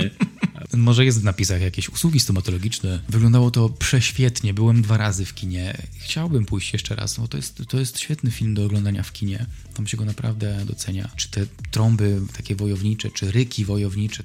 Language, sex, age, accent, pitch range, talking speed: Polish, male, 20-39, native, 105-115 Hz, 175 wpm